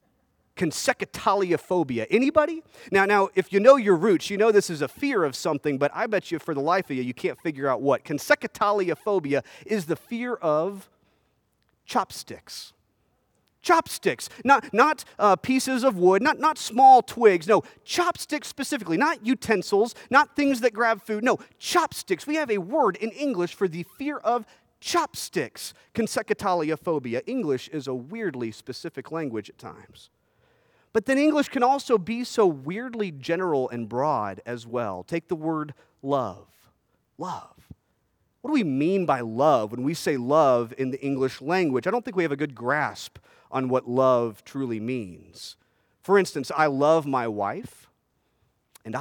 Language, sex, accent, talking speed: English, male, American, 160 wpm